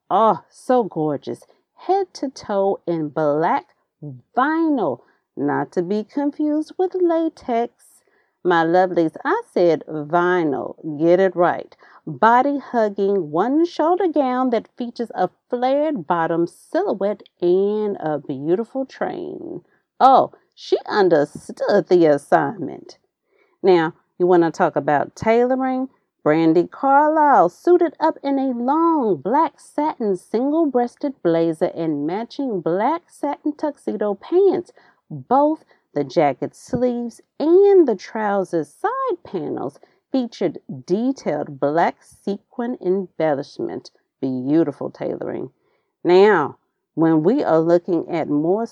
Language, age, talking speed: English, 40-59, 110 wpm